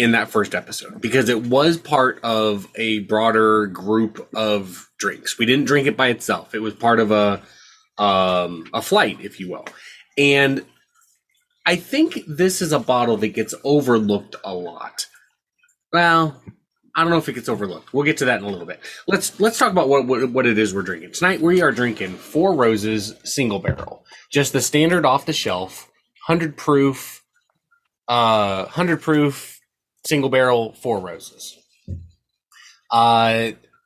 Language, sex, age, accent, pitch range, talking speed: English, male, 20-39, American, 110-145 Hz, 165 wpm